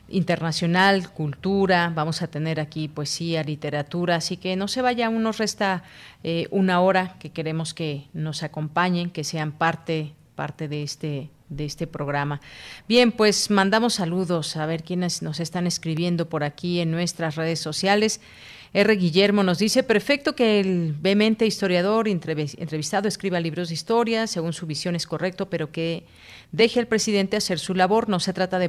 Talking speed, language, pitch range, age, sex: 165 wpm, Spanish, 160-195 Hz, 40-59, female